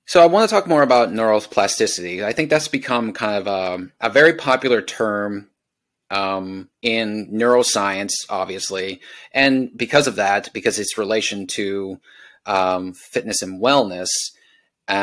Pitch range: 95-120 Hz